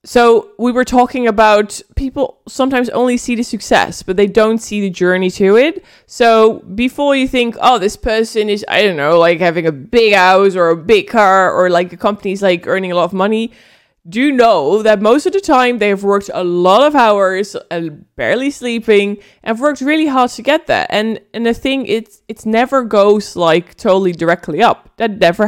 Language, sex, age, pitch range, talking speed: English, female, 20-39, 190-245 Hz, 210 wpm